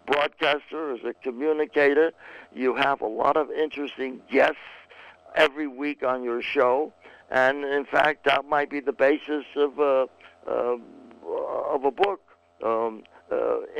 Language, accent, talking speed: English, American, 135 wpm